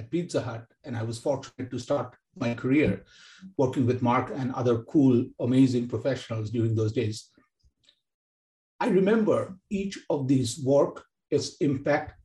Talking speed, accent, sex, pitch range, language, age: 140 wpm, Indian, male, 125-160 Hz, English, 60-79